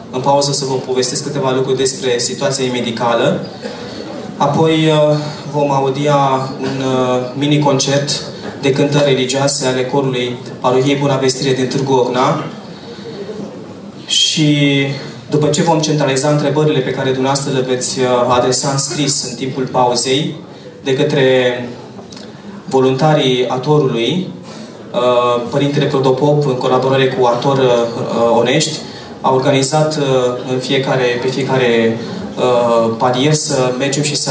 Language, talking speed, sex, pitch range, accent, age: Romanian, 115 wpm, male, 125-145 Hz, native, 20-39